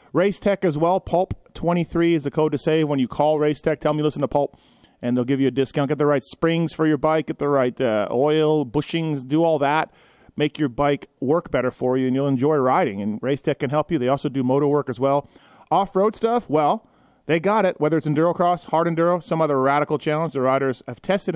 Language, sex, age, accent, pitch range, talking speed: English, male, 30-49, American, 135-170 Hz, 245 wpm